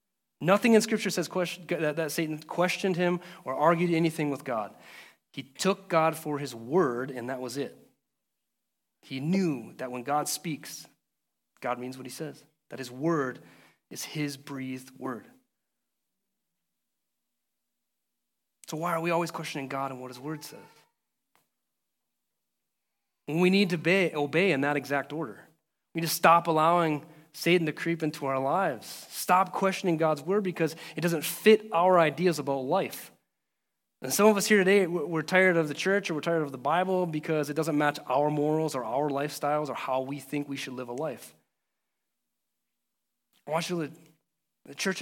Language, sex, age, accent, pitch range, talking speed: English, male, 30-49, American, 145-180 Hz, 165 wpm